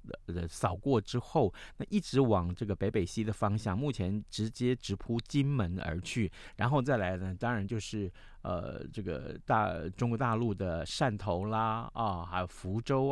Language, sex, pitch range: Chinese, male, 95-125 Hz